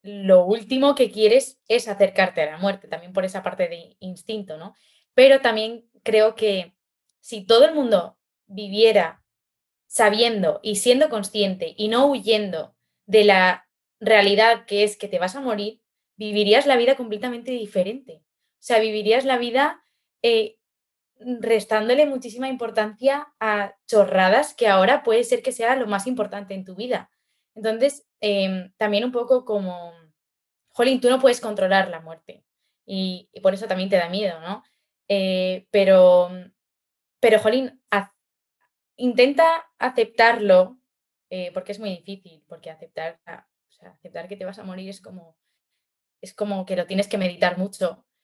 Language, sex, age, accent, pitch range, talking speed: Spanish, female, 20-39, Spanish, 185-240 Hz, 150 wpm